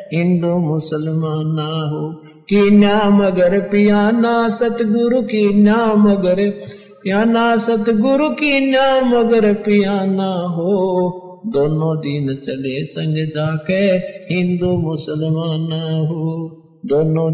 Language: Hindi